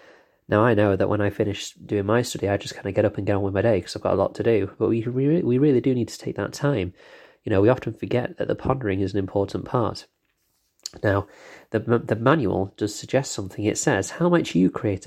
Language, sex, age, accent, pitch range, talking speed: English, male, 30-49, British, 100-120 Hz, 260 wpm